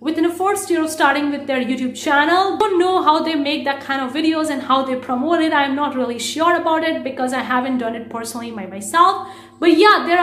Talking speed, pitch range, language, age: 240 wpm, 250-320 Hz, English, 30-49